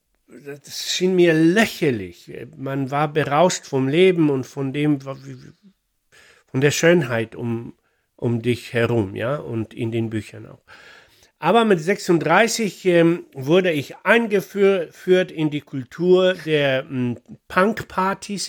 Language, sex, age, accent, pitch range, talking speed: German, male, 60-79, German, 135-185 Hz, 115 wpm